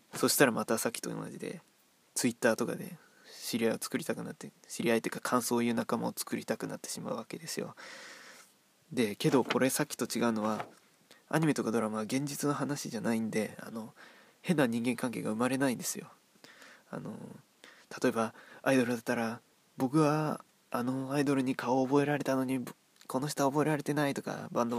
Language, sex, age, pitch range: Japanese, male, 20-39, 120-150 Hz